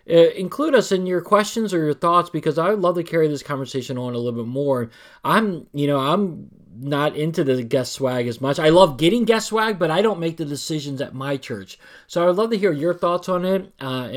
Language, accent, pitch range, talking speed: English, American, 120-175 Hz, 235 wpm